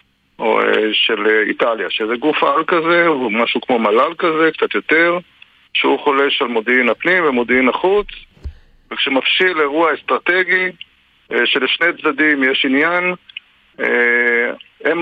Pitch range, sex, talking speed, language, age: 120-165 Hz, male, 115 wpm, Hebrew, 50-69